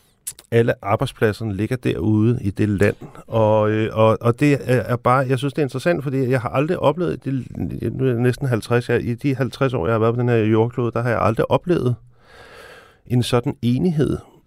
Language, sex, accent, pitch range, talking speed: Danish, male, native, 95-125 Hz, 200 wpm